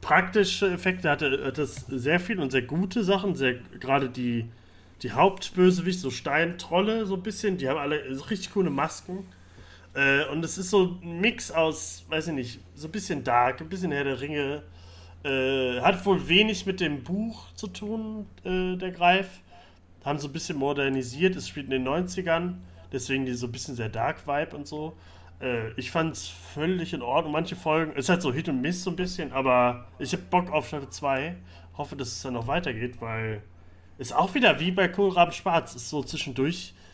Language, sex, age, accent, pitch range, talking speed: German, male, 30-49, German, 125-180 Hz, 200 wpm